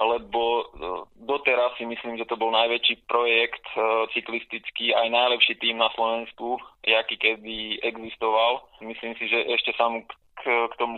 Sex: male